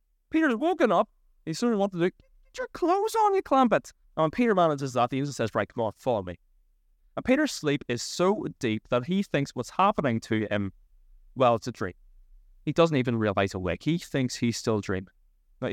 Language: English